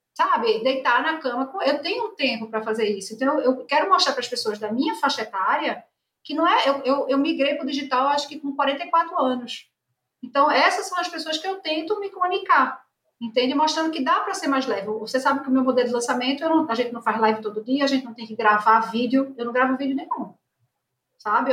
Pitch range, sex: 245-345 Hz, female